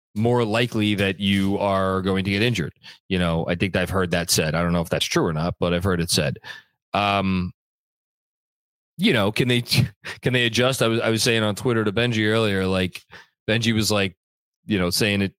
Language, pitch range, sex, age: English, 100-135 Hz, male, 30-49